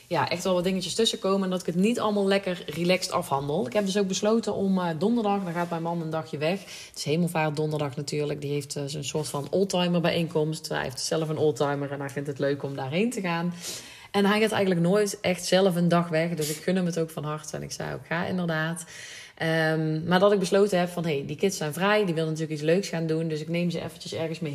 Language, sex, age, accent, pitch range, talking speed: Dutch, female, 30-49, Dutch, 155-185 Hz, 270 wpm